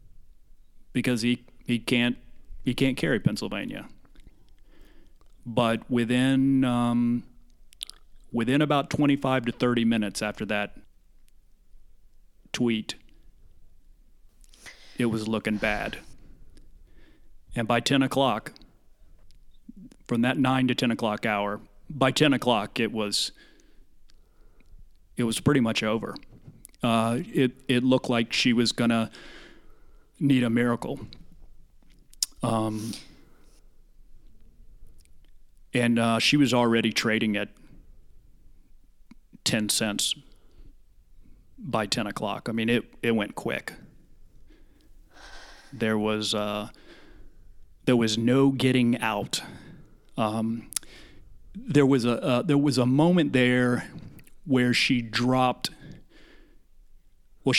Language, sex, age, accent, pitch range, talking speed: English, male, 30-49, American, 110-125 Hz, 100 wpm